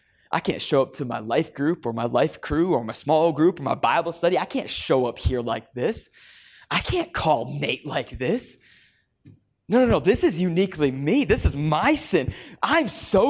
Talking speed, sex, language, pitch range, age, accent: 210 wpm, male, English, 180-265 Hz, 20-39, American